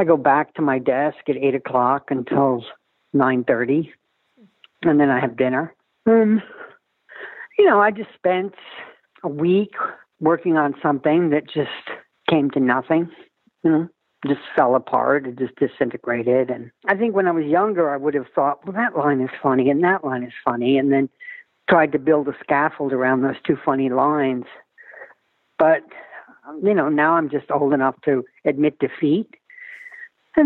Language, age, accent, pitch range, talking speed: English, 50-69, American, 135-185 Hz, 165 wpm